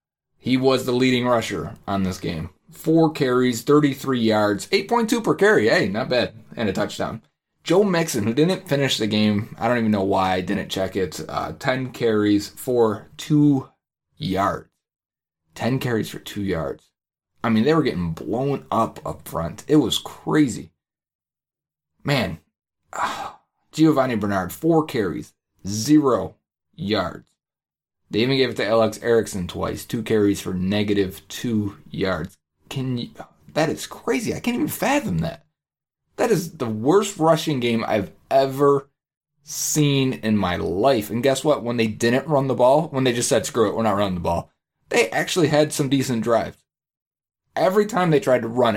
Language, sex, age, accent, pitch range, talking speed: English, male, 30-49, American, 105-150 Hz, 165 wpm